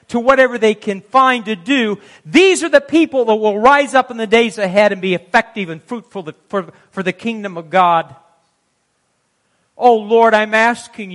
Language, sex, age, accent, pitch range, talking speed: English, male, 50-69, American, 215-290 Hz, 180 wpm